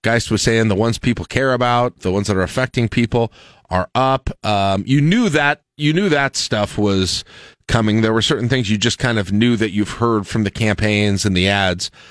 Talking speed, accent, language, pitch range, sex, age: 220 wpm, American, English, 105-130 Hz, male, 40-59